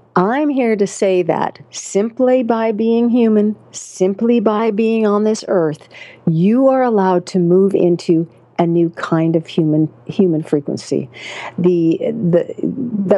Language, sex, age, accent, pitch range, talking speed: English, female, 50-69, American, 170-215 Hz, 135 wpm